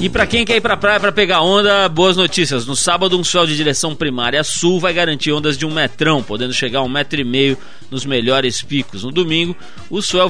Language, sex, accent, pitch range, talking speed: Portuguese, male, Brazilian, 130-170 Hz, 240 wpm